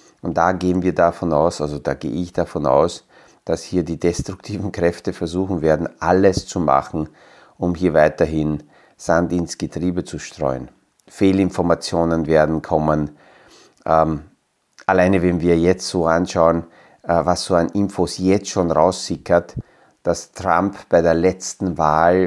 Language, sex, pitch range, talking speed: German, male, 80-95 Hz, 145 wpm